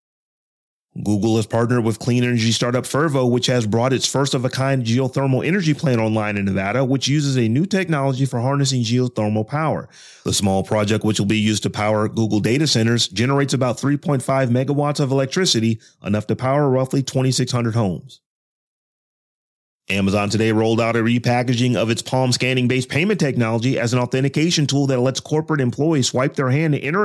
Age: 30-49